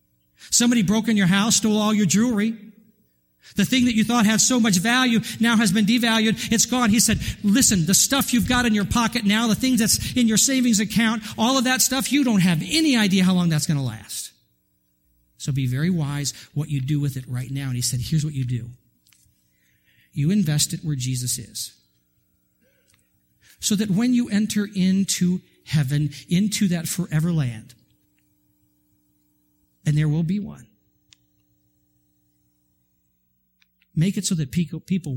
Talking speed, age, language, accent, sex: 175 wpm, 50-69, English, American, male